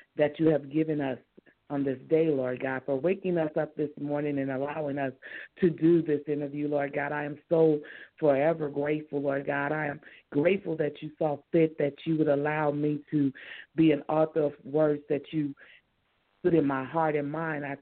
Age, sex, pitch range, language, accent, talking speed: 50-69, female, 135-155 Hz, English, American, 200 wpm